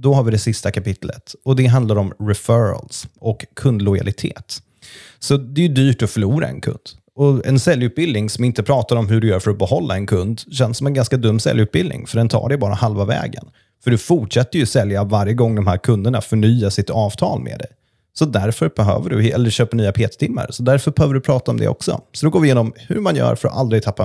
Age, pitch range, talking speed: 30-49, 105-135 Hz, 230 wpm